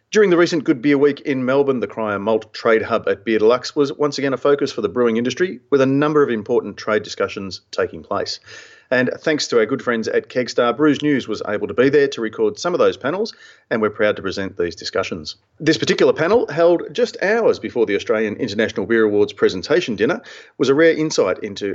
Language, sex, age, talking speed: English, male, 40-59, 225 wpm